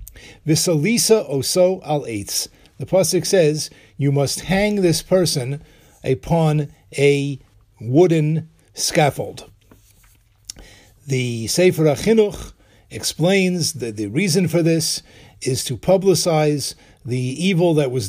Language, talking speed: English, 95 wpm